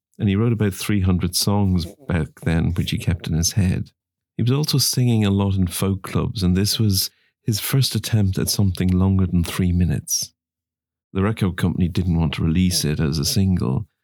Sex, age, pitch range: male, 50-69, 90-105 Hz